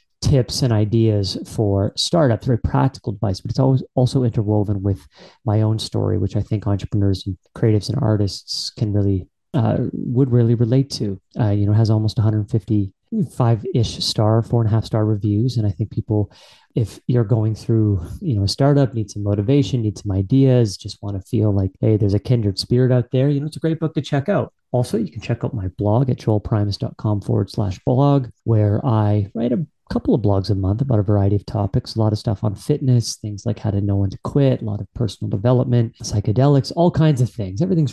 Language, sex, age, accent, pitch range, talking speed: English, male, 30-49, American, 105-135 Hz, 215 wpm